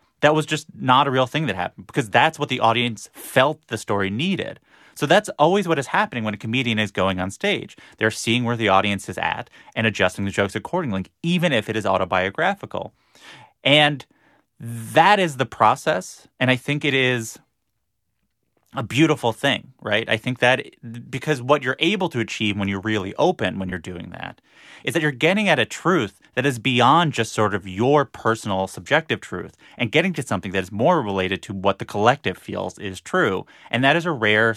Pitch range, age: 105-140 Hz, 30-49